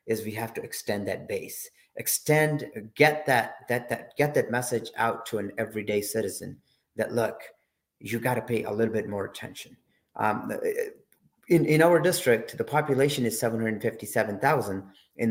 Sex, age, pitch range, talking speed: male, 30-49, 110-160 Hz, 175 wpm